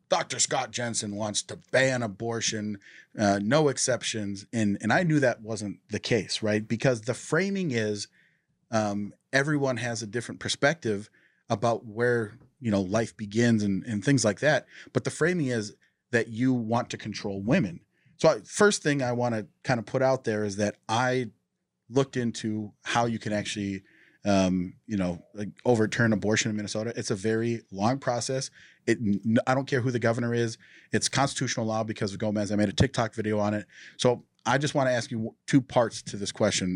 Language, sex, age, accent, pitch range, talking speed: English, male, 30-49, American, 105-125 Hz, 190 wpm